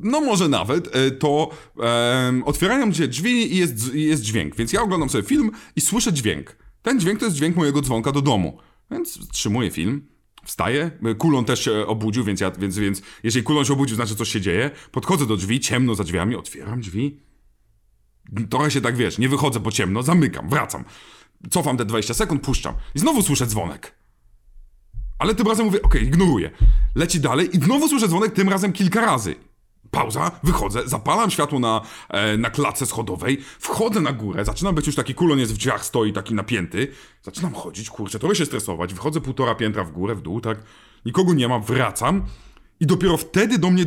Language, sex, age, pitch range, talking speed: Polish, male, 30-49, 115-165 Hz, 190 wpm